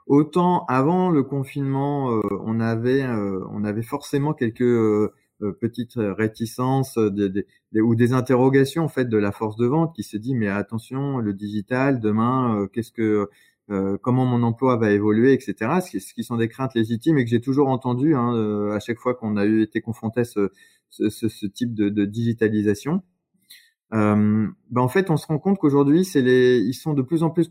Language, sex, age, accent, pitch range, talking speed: French, male, 20-39, French, 110-140 Hz, 185 wpm